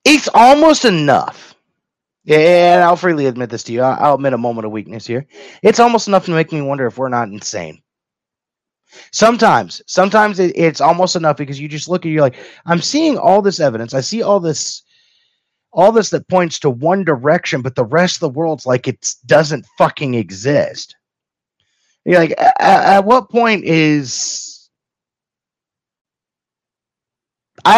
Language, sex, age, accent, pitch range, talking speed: English, male, 30-49, American, 135-185 Hz, 160 wpm